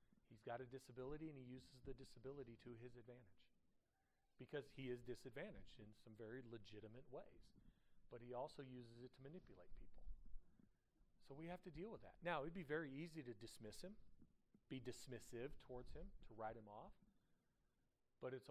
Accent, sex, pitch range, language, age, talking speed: American, male, 115-140 Hz, English, 40-59, 170 wpm